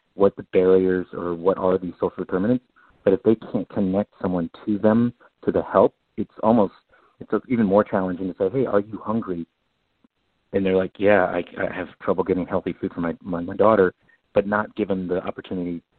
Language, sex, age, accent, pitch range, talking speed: English, male, 40-59, American, 90-105 Hz, 200 wpm